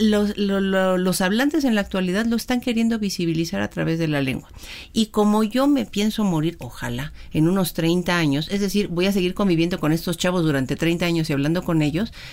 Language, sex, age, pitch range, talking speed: Spanish, female, 40-59, 175-230 Hz, 215 wpm